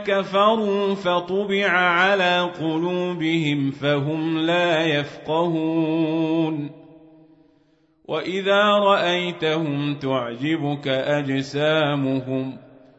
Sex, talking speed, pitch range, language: male, 50 wpm, 160-195 Hz, Arabic